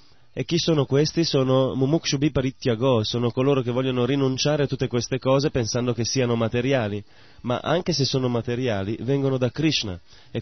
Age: 30-49